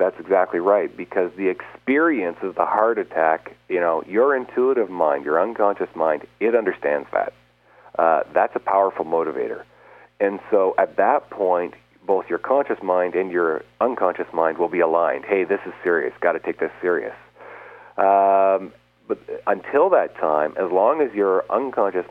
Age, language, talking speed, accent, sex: 40-59, English, 165 wpm, American, male